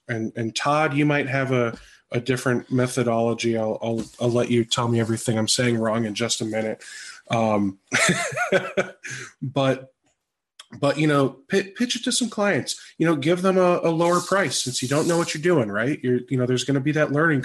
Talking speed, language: 210 wpm, English